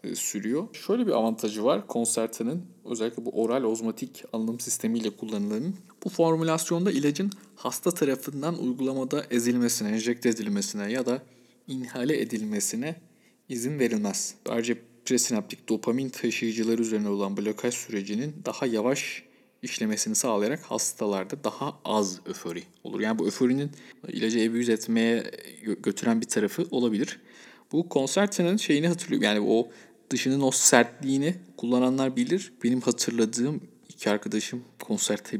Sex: male